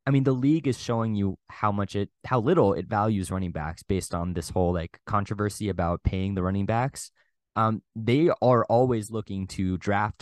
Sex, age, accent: male, 20-39, American